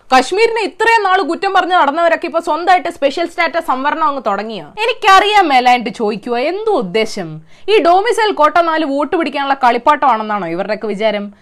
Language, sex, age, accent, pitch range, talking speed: Malayalam, female, 20-39, native, 245-350 Hz, 130 wpm